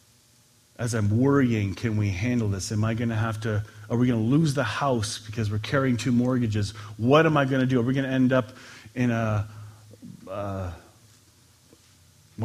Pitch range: 110-175 Hz